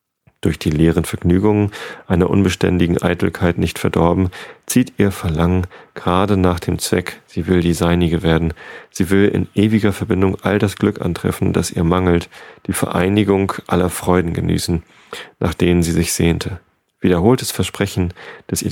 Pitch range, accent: 85-95 Hz, German